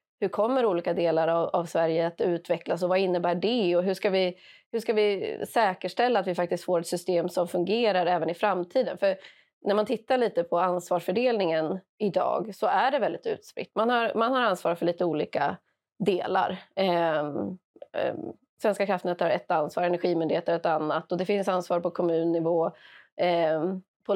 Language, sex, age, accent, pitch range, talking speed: Swedish, female, 20-39, native, 170-200 Hz, 175 wpm